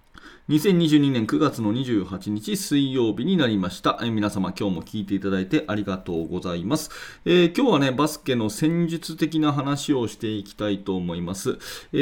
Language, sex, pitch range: Japanese, male, 100-145 Hz